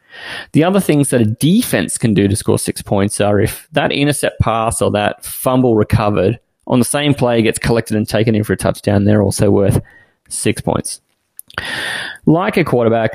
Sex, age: male, 20-39